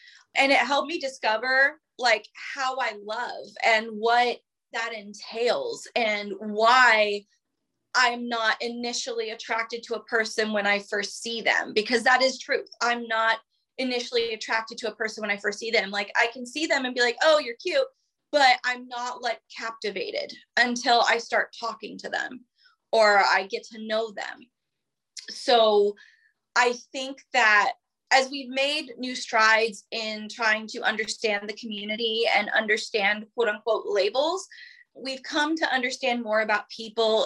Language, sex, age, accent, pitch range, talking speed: English, female, 20-39, American, 220-265 Hz, 155 wpm